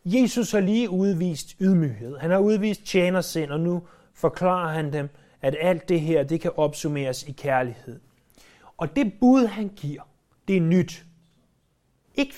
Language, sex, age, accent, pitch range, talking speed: Danish, male, 30-49, native, 155-225 Hz, 155 wpm